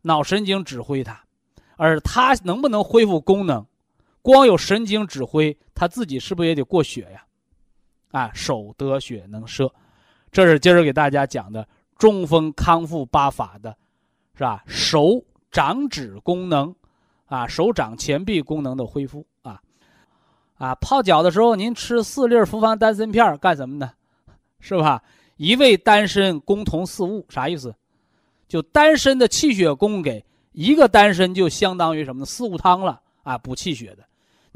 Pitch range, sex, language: 135-210 Hz, male, Chinese